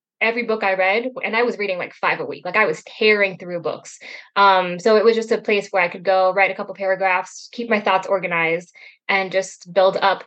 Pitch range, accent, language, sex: 190-245 Hz, American, English, female